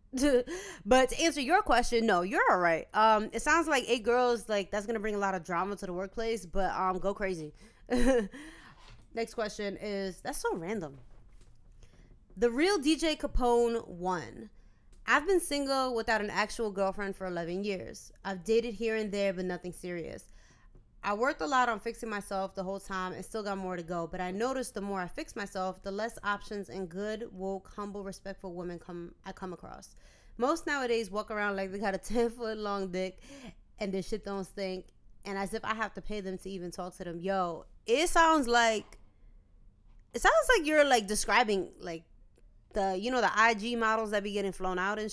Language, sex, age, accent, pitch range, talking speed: English, female, 20-39, American, 185-235 Hz, 200 wpm